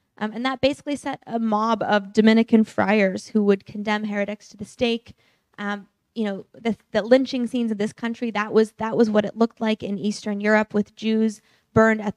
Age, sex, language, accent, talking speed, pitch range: 10-29, female, English, American, 200 wpm, 205-235 Hz